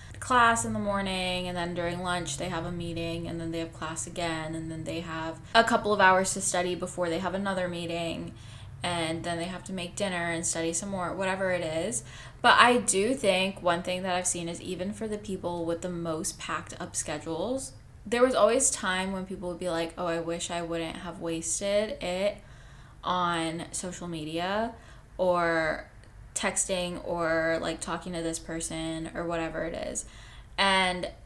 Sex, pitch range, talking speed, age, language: female, 165-195 Hz, 190 wpm, 10-29, English